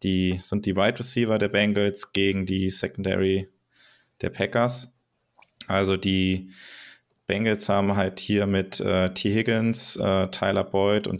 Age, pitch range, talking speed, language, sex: 20-39, 95-110 Hz, 145 wpm, German, male